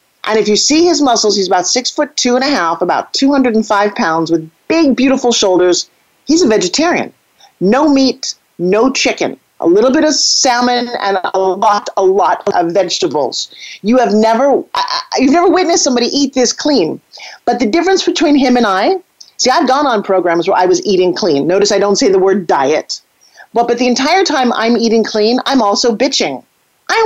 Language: English